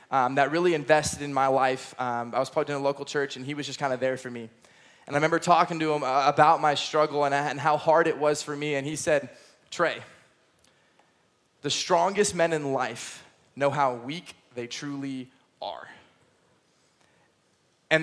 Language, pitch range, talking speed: English, 150-205 Hz, 185 wpm